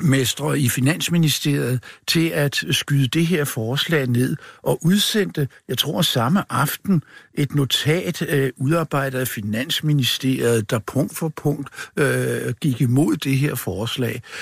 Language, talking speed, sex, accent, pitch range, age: Danish, 135 wpm, male, native, 125-160 Hz, 60-79